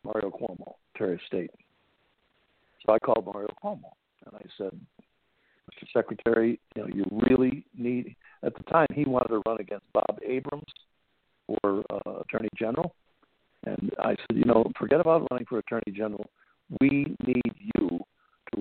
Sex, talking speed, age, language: male, 155 wpm, 60-79, English